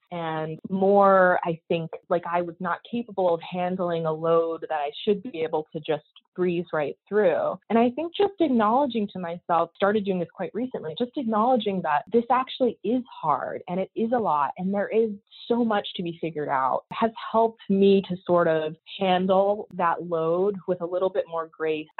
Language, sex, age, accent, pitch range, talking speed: English, female, 20-39, American, 160-200 Hz, 195 wpm